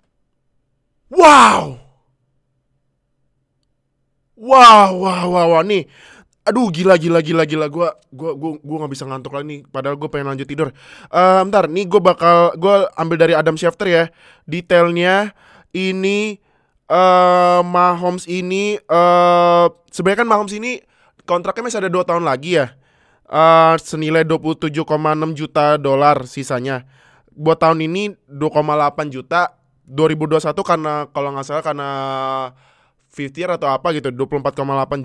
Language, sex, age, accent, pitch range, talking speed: Indonesian, male, 20-39, native, 145-190 Hz, 125 wpm